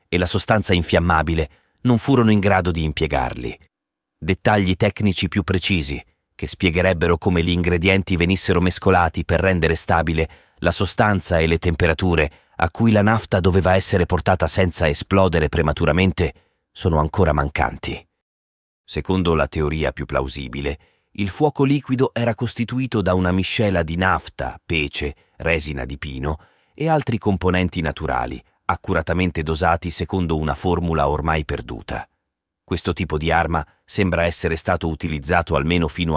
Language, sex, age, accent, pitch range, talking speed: Italian, male, 30-49, native, 80-100 Hz, 135 wpm